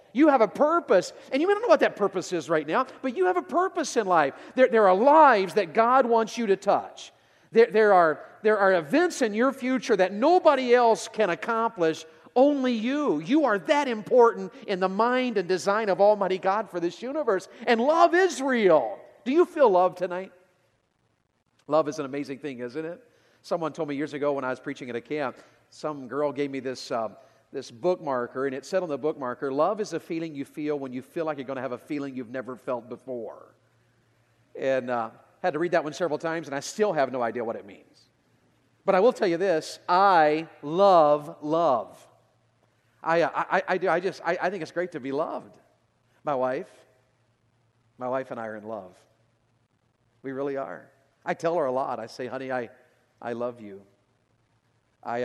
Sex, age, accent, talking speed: male, 40-59, American, 205 wpm